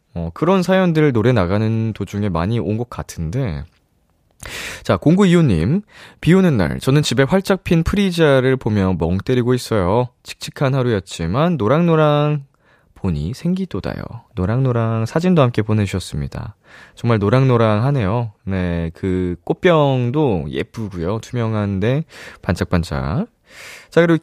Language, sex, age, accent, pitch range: Korean, male, 20-39, native, 90-150 Hz